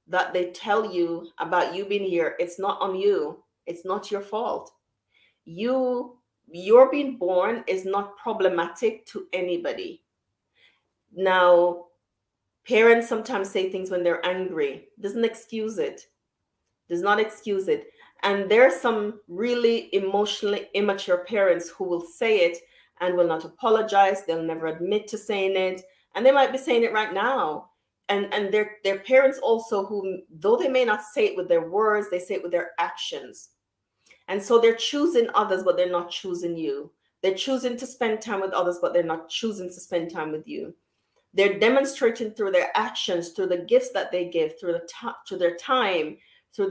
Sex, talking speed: female, 175 wpm